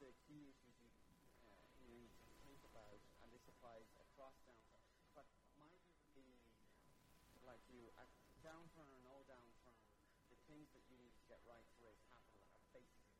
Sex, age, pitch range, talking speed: male, 40-59, 115-140 Hz, 180 wpm